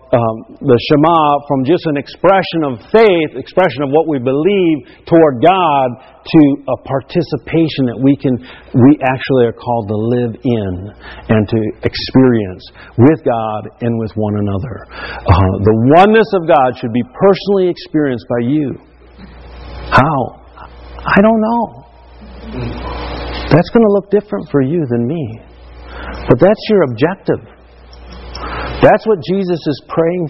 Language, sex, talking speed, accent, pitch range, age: English, male, 140 wpm, American, 100-150 Hz, 50-69